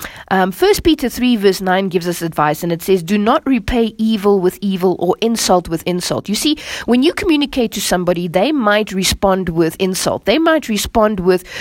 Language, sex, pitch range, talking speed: English, female, 185-265 Hz, 195 wpm